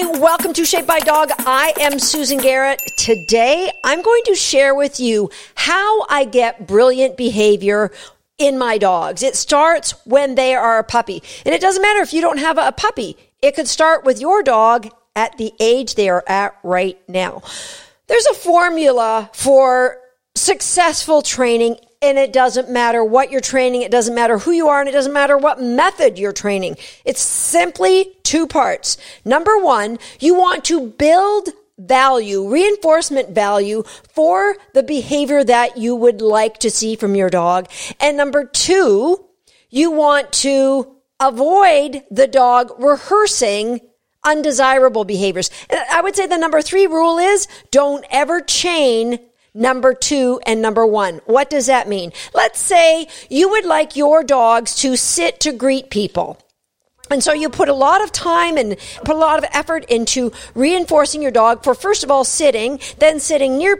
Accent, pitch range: American, 235-320 Hz